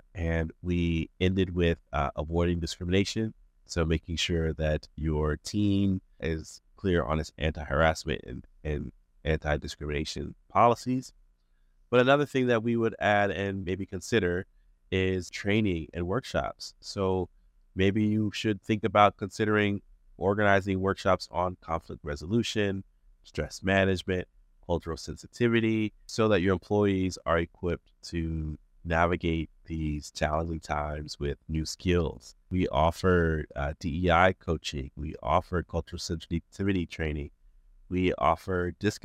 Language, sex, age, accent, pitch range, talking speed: English, male, 30-49, American, 75-95 Hz, 120 wpm